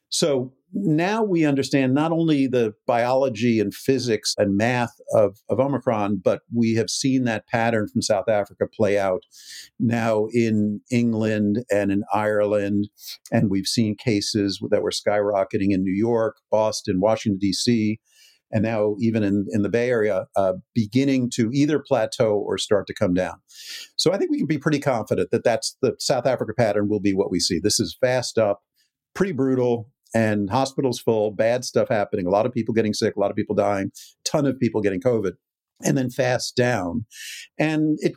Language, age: English, 50-69